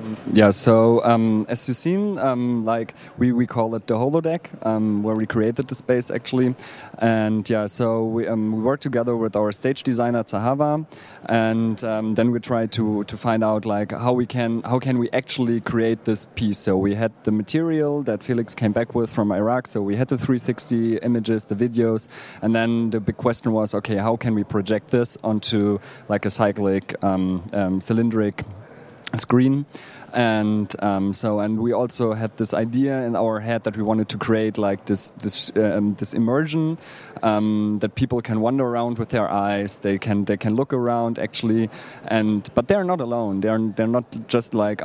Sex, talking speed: male, 190 wpm